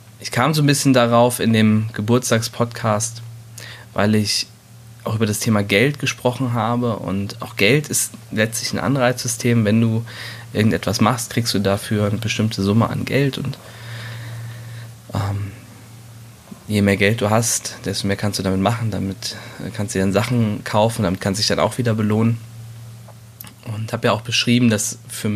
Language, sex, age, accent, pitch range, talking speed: German, male, 20-39, German, 105-120 Hz, 170 wpm